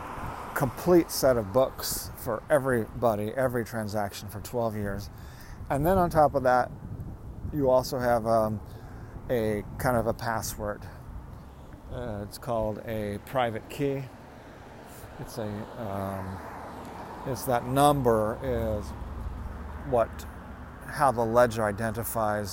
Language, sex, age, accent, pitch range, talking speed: English, male, 40-59, American, 105-125 Hz, 115 wpm